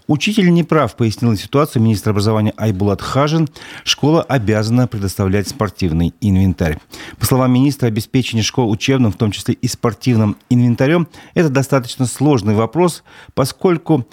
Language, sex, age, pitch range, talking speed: Russian, male, 40-59, 105-135 Hz, 125 wpm